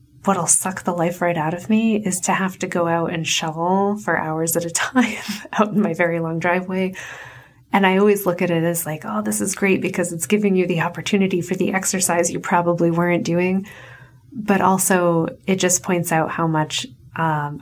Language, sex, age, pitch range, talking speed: English, female, 30-49, 160-205 Hz, 210 wpm